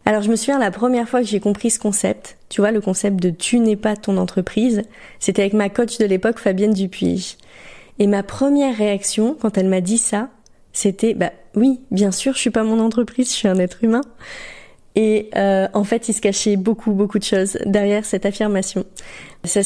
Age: 30-49